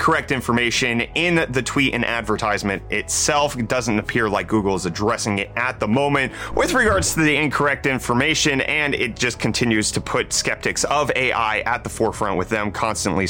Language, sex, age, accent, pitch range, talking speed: English, male, 30-49, American, 100-125 Hz, 180 wpm